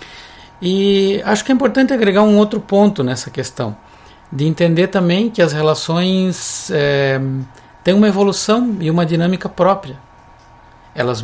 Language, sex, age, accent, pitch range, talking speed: Portuguese, male, 60-79, Brazilian, 125-190 Hz, 140 wpm